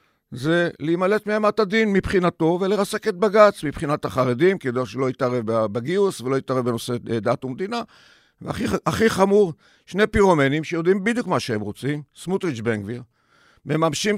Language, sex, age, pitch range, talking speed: Hebrew, male, 50-69, 135-200 Hz, 140 wpm